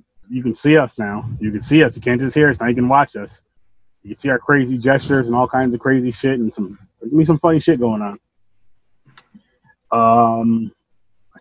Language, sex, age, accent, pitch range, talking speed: English, male, 20-39, American, 115-130 Hz, 220 wpm